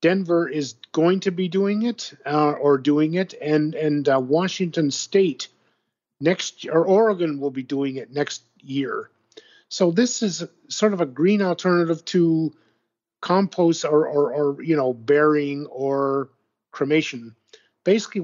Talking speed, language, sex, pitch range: 145 wpm, English, male, 140-175 Hz